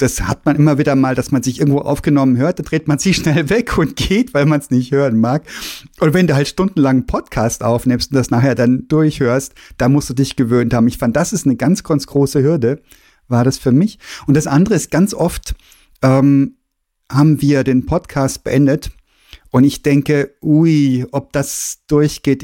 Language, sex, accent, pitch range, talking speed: German, male, German, 135-165 Hz, 205 wpm